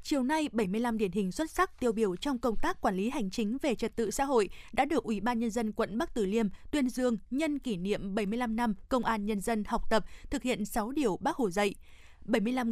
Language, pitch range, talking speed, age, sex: Vietnamese, 220-270 Hz, 245 wpm, 20-39, female